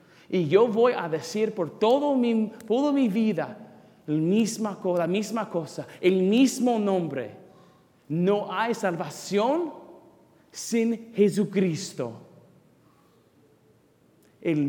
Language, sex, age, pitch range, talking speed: English, male, 40-59, 145-205 Hz, 100 wpm